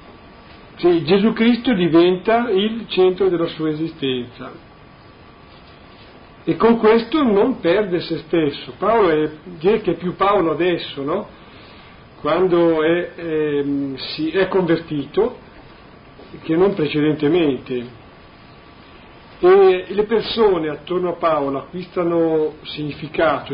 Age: 50-69